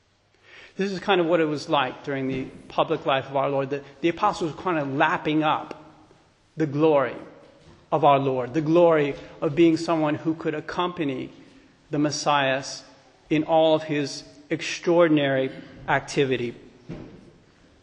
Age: 40-59